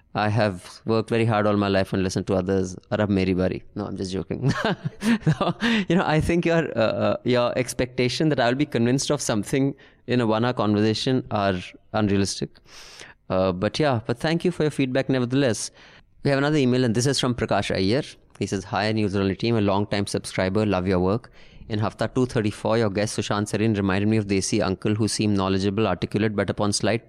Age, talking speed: 20-39, 195 wpm